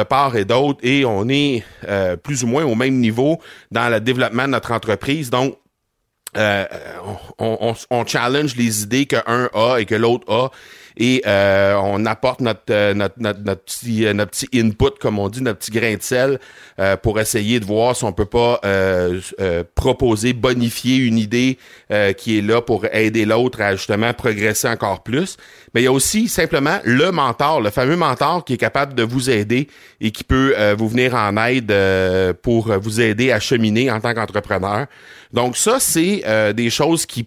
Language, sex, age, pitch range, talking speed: French, male, 40-59, 105-135 Hz, 200 wpm